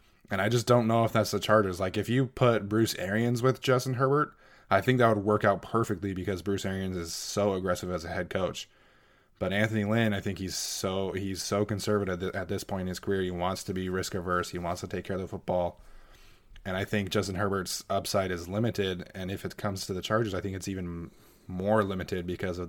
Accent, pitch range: American, 90-105 Hz